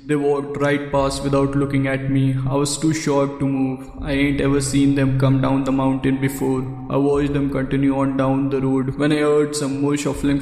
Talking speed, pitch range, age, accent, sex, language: 220 wpm, 135-140 Hz, 20-39, Indian, male, English